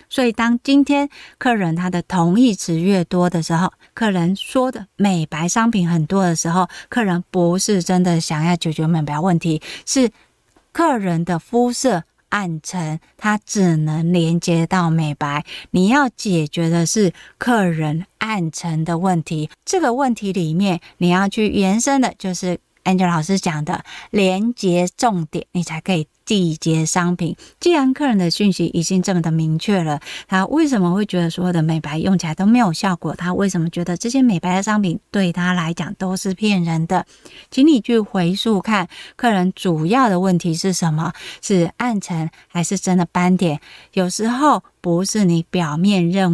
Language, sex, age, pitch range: Chinese, female, 20-39, 170-215 Hz